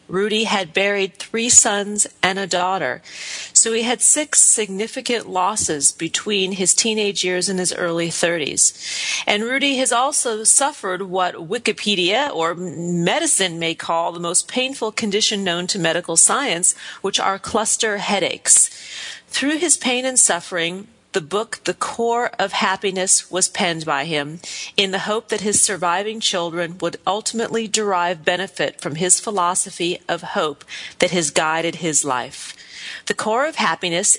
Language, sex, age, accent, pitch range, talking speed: English, female, 40-59, American, 175-225 Hz, 150 wpm